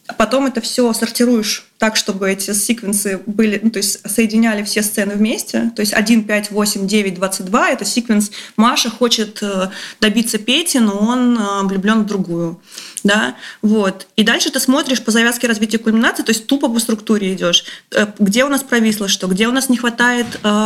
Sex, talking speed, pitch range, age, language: female, 170 wpm, 200-230 Hz, 20-39, Russian